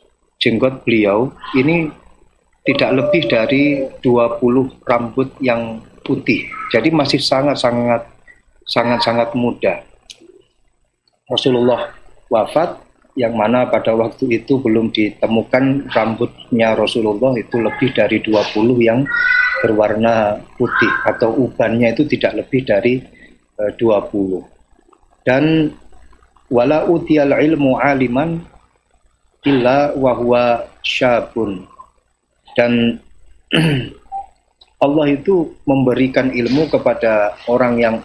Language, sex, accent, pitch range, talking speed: Indonesian, male, native, 110-135 Hz, 90 wpm